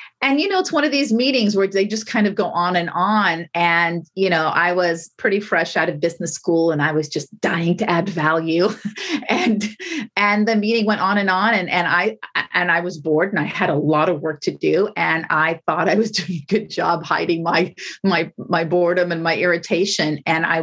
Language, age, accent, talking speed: English, 40-59, American, 230 wpm